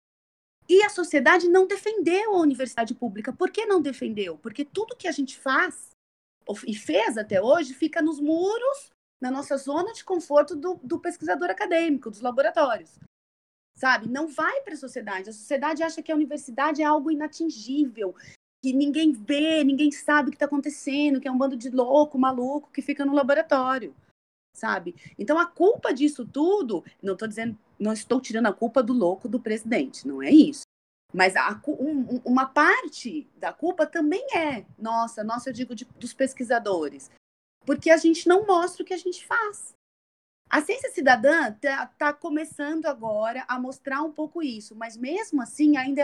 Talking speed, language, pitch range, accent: 175 wpm, Portuguese, 230-315 Hz, Brazilian